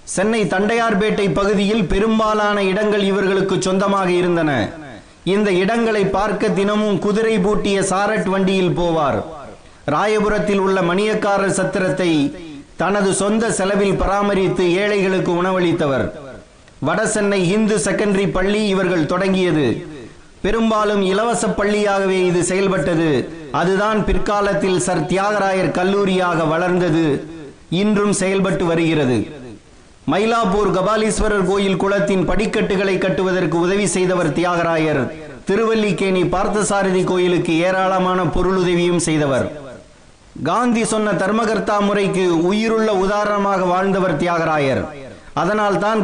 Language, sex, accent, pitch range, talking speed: Tamil, male, native, 180-205 Hz, 95 wpm